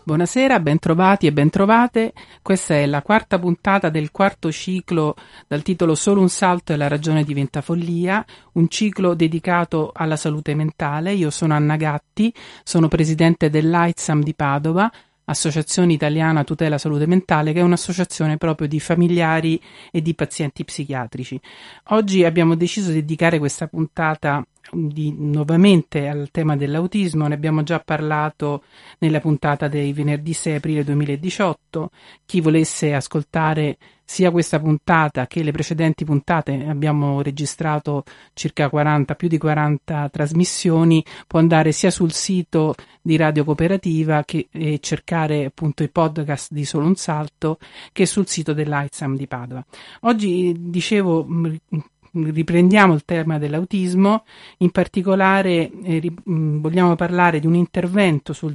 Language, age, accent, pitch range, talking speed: Italian, 40-59, native, 150-175 Hz, 135 wpm